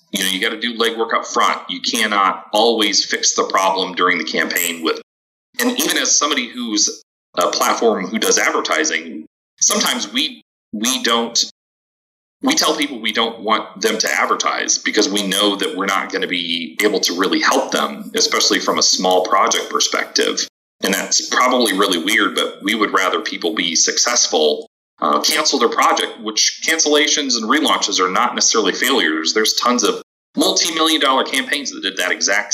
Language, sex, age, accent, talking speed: English, male, 30-49, American, 175 wpm